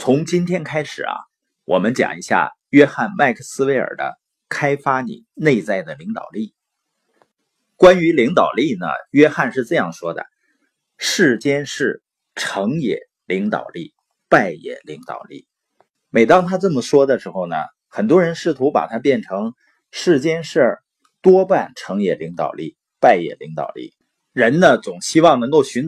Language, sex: Chinese, male